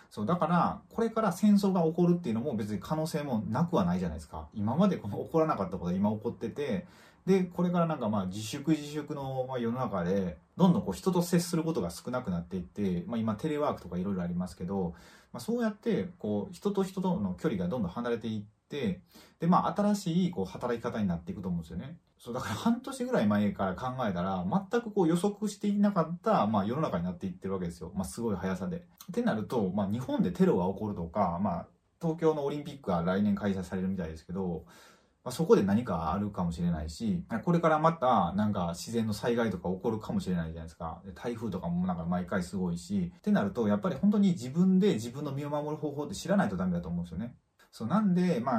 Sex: male